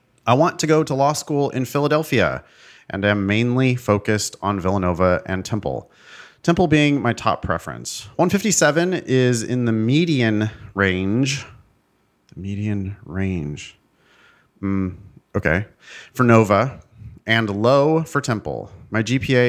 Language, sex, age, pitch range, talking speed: English, male, 30-49, 100-140 Hz, 125 wpm